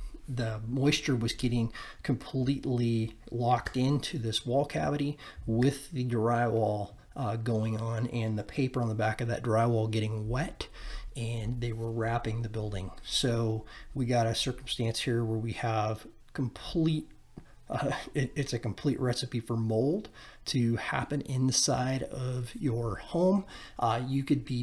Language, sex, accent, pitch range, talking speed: English, male, American, 115-130 Hz, 150 wpm